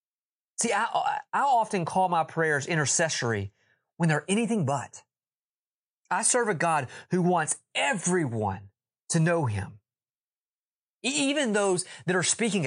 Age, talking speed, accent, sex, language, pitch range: 30-49, 135 wpm, American, male, English, 115-160 Hz